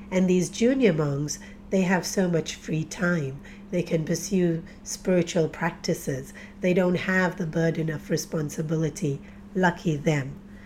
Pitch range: 170-210 Hz